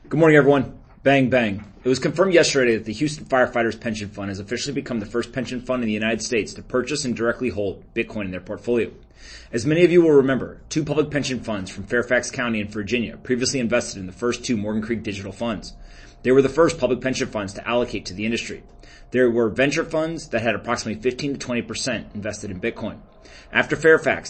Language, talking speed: English, 215 wpm